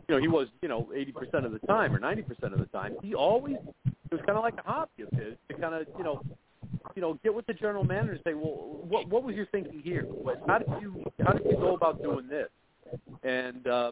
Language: English